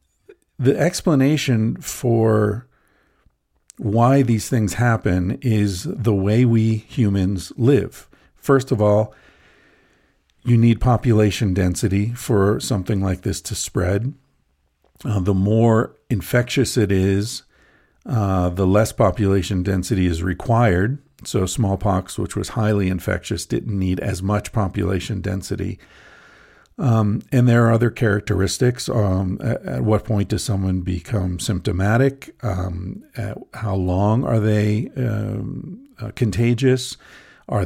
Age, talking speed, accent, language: 50-69, 120 wpm, American, English